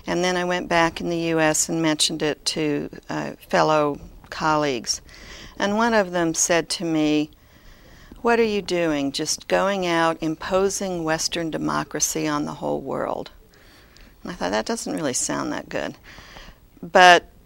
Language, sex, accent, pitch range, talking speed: English, female, American, 145-170 Hz, 160 wpm